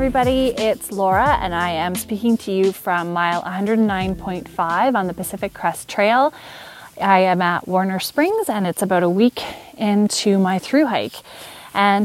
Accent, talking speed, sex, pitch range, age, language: American, 165 wpm, female, 190-250 Hz, 20-39, English